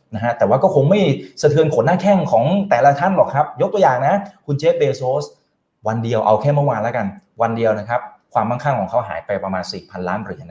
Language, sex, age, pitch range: Thai, male, 20-39, 115-155 Hz